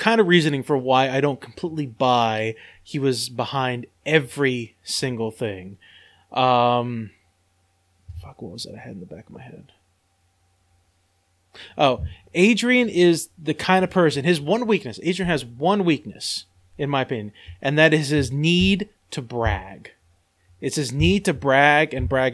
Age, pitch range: 20-39, 120-165 Hz